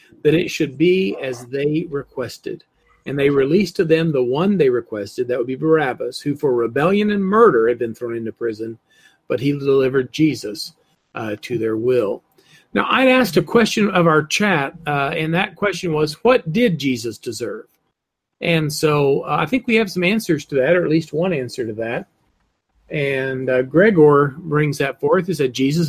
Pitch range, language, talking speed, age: 140-185 Hz, English, 190 wpm, 40-59